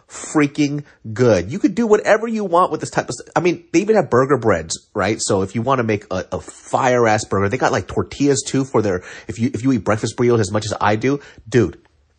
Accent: American